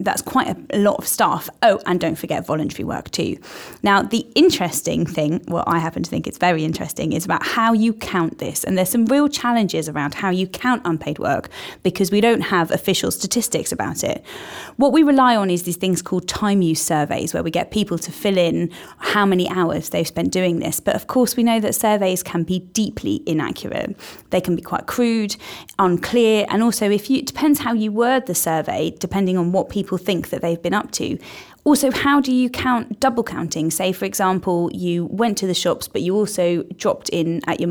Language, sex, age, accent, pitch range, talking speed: English, female, 20-39, British, 170-225 Hz, 215 wpm